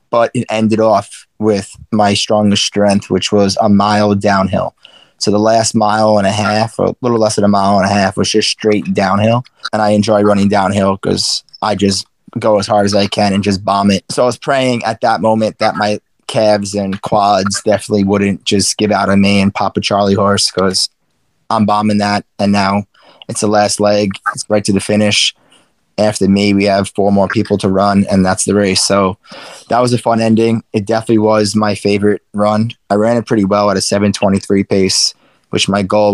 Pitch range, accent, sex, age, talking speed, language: 100-110 Hz, American, male, 20-39, 215 wpm, English